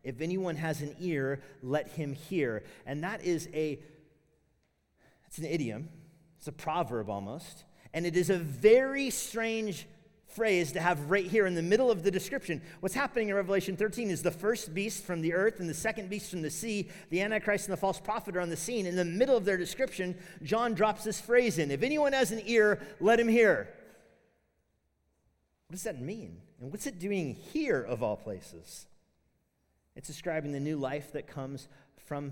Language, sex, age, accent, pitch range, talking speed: English, male, 40-59, American, 115-190 Hz, 195 wpm